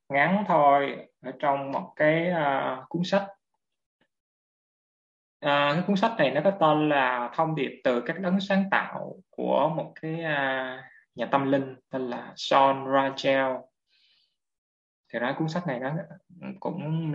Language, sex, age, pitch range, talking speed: Vietnamese, male, 20-39, 135-170 Hz, 150 wpm